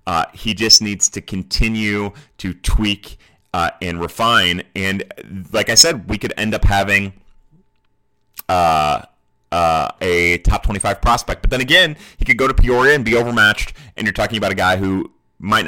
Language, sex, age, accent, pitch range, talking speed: English, male, 30-49, American, 95-120 Hz, 170 wpm